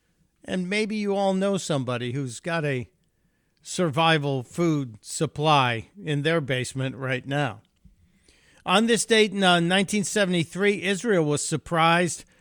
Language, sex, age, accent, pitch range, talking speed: English, male, 50-69, American, 140-185 Hz, 120 wpm